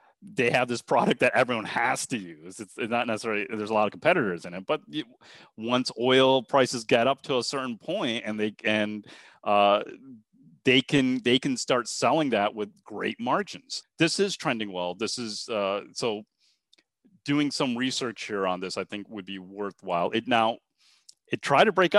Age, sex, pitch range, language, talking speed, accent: 30-49, male, 105-125 Hz, English, 185 wpm, American